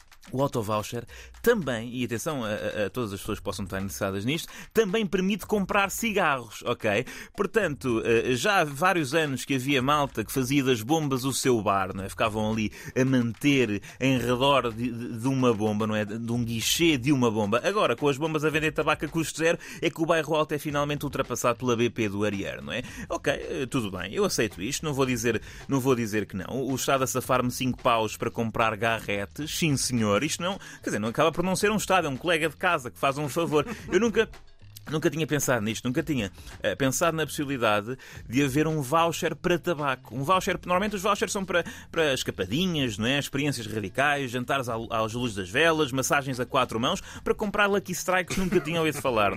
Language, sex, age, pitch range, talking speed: Portuguese, male, 20-39, 115-155 Hz, 215 wpm